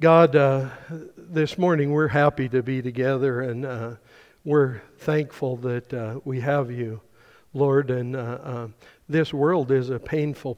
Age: 60-79